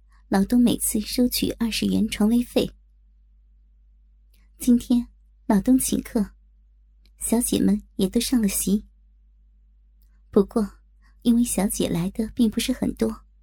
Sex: male